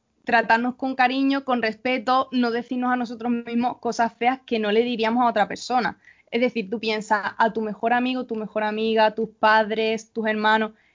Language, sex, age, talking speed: Spanish, female, 20-39, 185 wpm